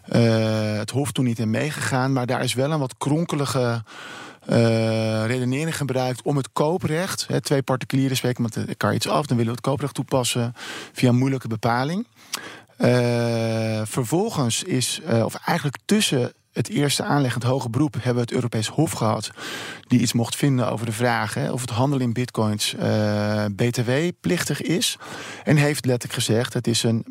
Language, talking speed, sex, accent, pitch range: Dutch, 175 wpm, male, Dutch, 115-140 Hz